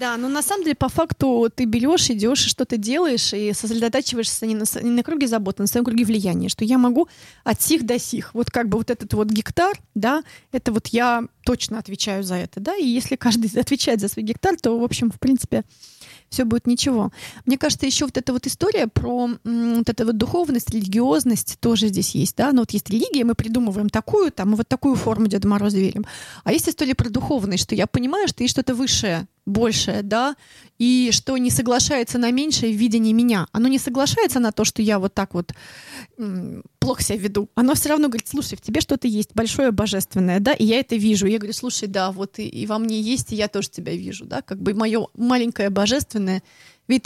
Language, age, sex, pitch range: Russian, 30-49, female, 210-255 Hz